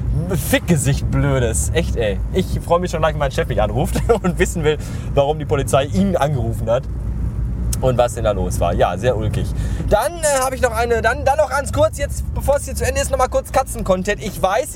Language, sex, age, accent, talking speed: German, male, 20-39, German, 225 wpm